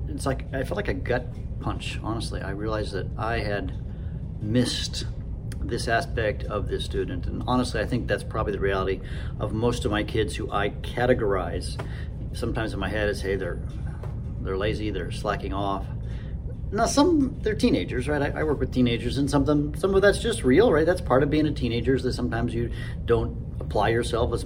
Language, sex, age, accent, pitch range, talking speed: English, male, 40-59, American, 100-125 Hz, 200 wpm